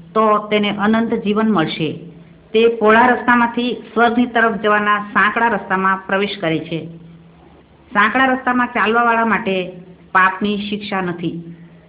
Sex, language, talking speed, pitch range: female, Gujarati, 100 wpm, 175-230 Hz